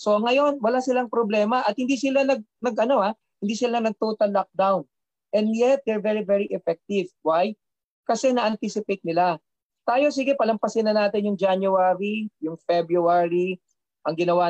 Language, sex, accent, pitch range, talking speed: English, male, Filipino, 175-235 Hz, 155 wpm